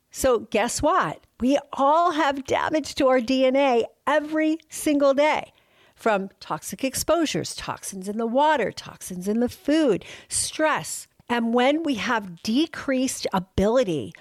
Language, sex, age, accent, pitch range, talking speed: English, female, 50-69, American, 200-275 Hz, 130 wpm